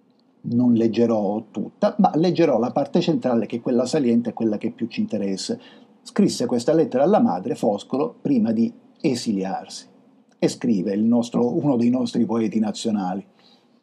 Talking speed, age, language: 155 wpm, 50-69, Italian